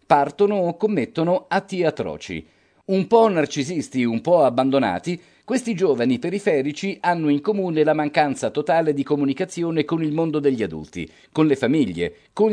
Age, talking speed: 40-59, 150 wpm